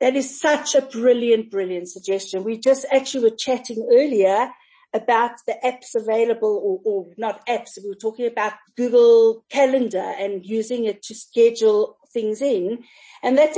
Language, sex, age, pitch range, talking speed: English, female, 50-69, 225-290 Hz, 160 wpm